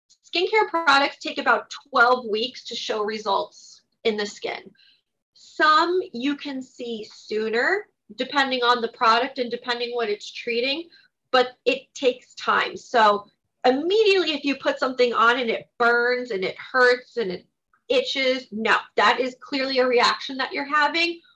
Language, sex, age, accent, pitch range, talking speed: English, female, 30-49, American, 230-280 Hz, 155 wpm